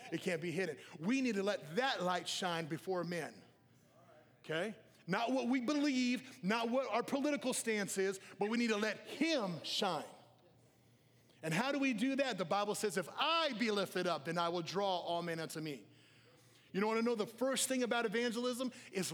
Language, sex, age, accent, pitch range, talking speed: English, male, 30-49, American, 135-210 Hz, 200 wpm